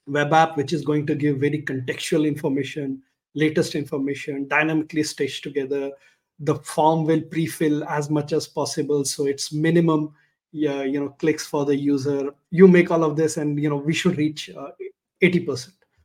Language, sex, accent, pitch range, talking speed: English, male, Indian, 140-165 Hz, 170 wpm